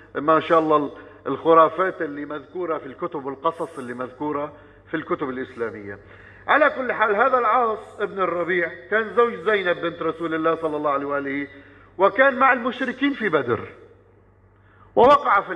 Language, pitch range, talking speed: Arabic, 140-185 Hz, 150 wpm